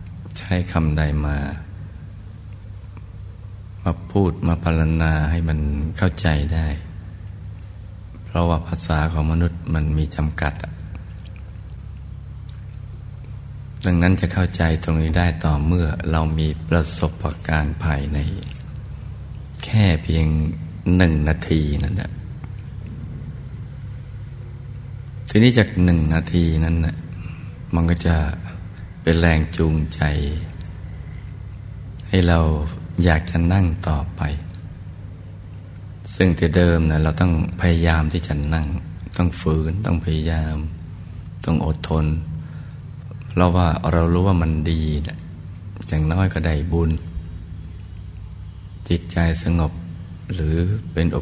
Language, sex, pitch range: Thai, male, 80-100 Hz